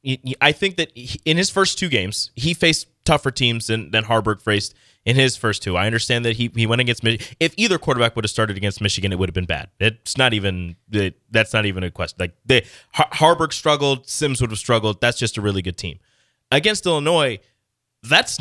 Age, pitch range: 20-39, 110-140 Hz